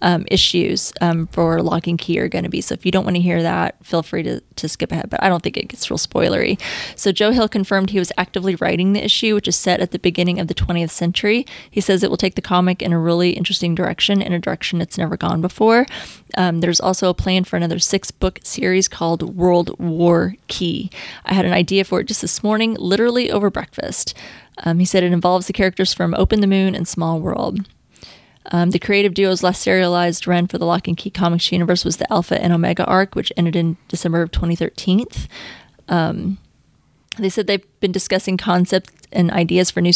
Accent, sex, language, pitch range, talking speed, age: American, female, English, 170-190 Hz, 220 wpm, 20-39